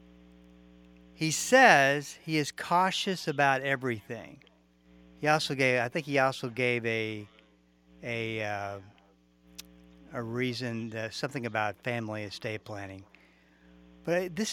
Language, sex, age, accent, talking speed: English, male, 50-69, American, 105 wpm